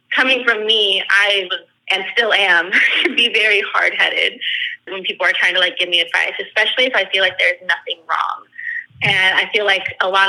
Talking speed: 205 wpm